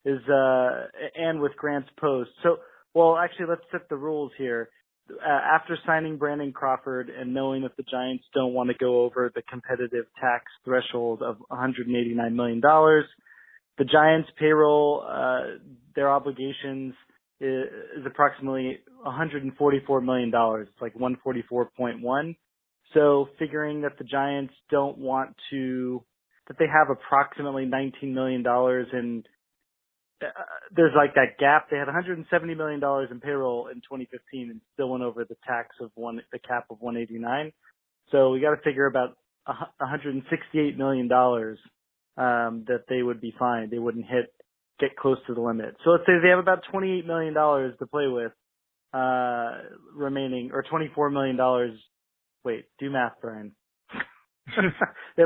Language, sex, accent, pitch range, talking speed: English, male, American, 125-150 Hz, 145 wpm